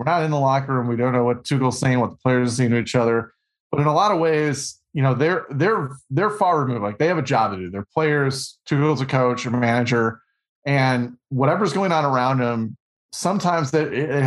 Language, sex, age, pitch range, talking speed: English, male, 30-49, 130-170 Hz, 235 wpm